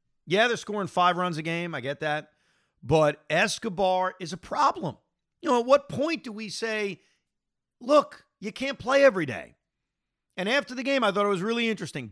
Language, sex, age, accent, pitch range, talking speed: English, male, 40-59, American, 145-210 Hz, 195 wpm